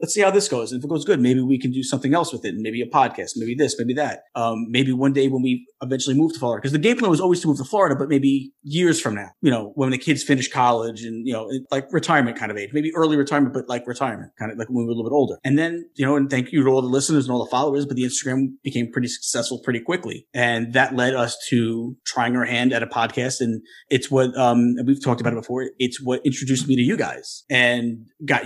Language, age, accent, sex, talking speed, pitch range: English, 30-49, American, male, 280 wpm, 120-145 Hz